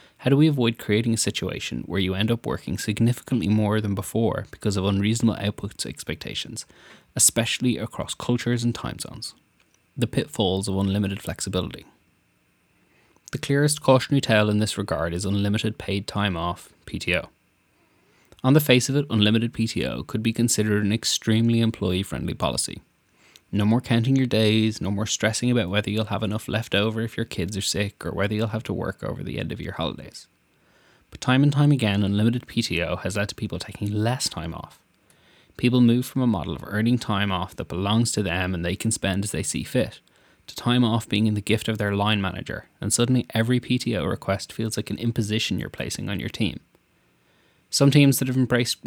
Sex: male